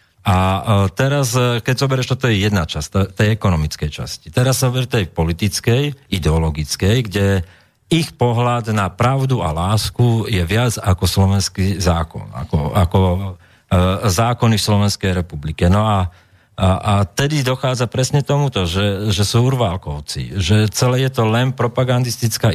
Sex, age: male, 40-59